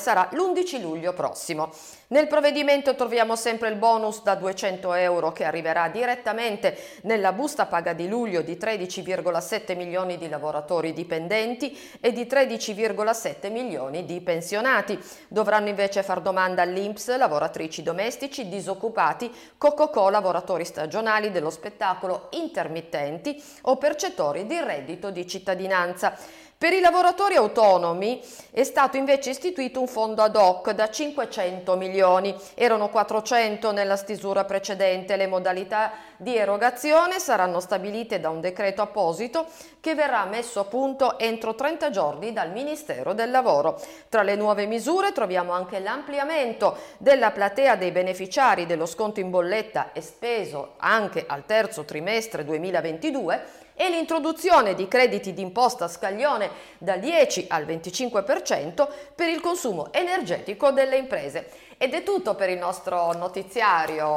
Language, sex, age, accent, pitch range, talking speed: Italian, female, 50-69, native, 185-260 Hz, 130 wpm